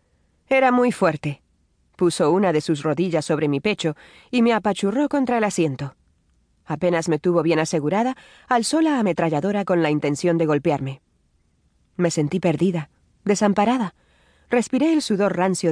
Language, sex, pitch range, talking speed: Spanish, female, 150-215 Hz, 145 wpm